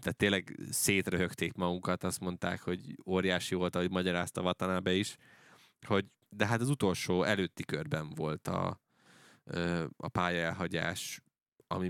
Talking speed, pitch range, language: 125 wpm, 90-110 Hz, Hungarian